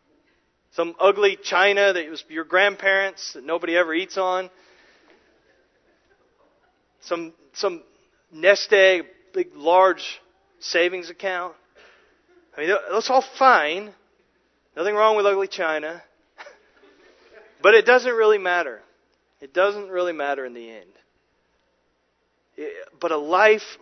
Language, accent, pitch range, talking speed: English, American, 130-195 Hz, 115 wpm